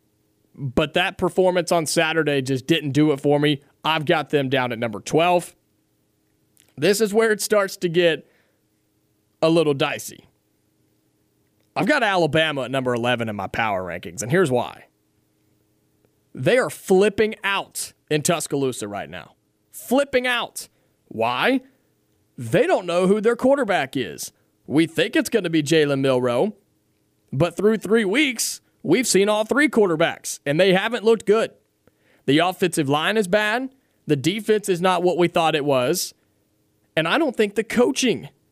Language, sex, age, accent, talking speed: English, male, 30-49, American, 155 wpm